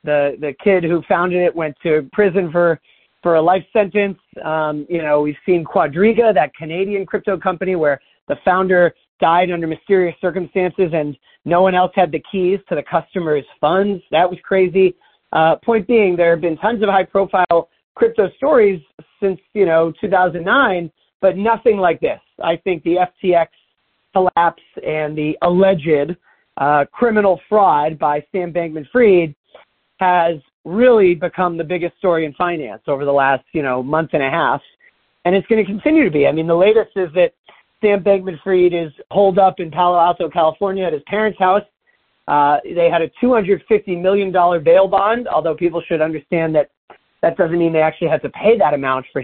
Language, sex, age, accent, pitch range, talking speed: English, male, 40-59, American, 160-195 Hz, 180 wpm